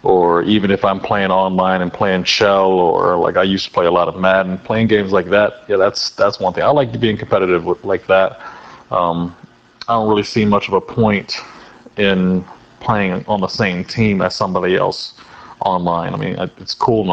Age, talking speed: 30-49, 205 wpm